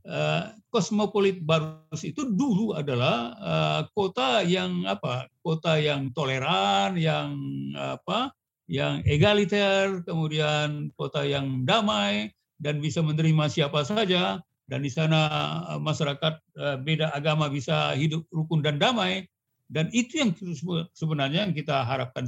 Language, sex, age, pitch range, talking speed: Indonesian, male, 50-69, 140-190 Hz, 115 wpm